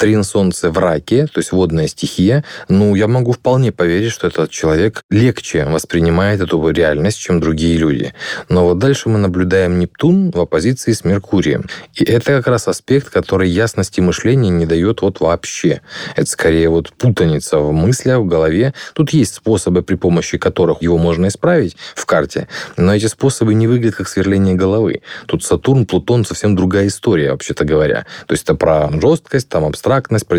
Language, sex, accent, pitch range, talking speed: Russian, male, native, 85-110 Hz, 170 wpm